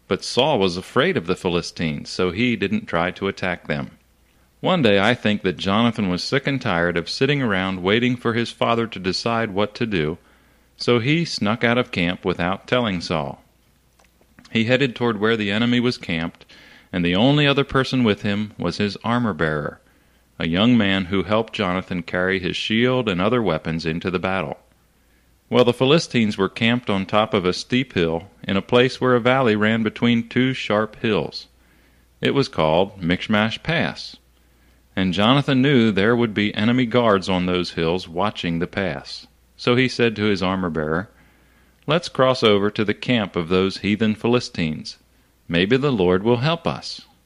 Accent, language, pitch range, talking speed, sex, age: American, English, 90-120 Hz, 180 wpm, male, 40-59